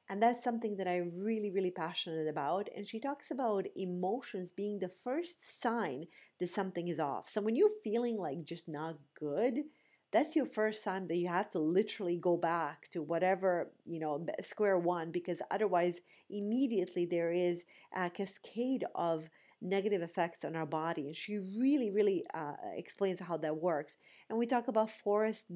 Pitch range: 170-215 Hz